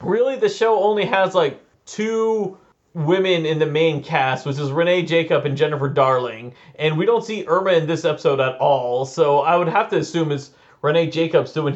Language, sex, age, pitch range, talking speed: English, male, 30-49, 145-185 Hz, 200 wpm